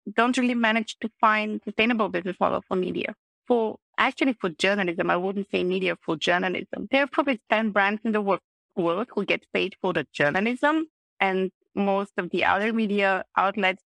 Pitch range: 190-230 Hz